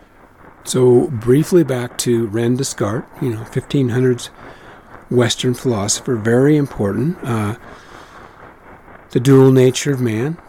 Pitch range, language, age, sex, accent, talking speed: 110-130 Hz, English, 50-69, male, American, 110 wpm